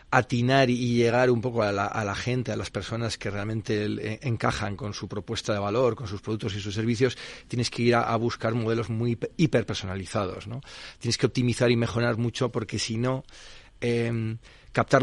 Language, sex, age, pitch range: Spanish, male, 40-59, 105-125 Hz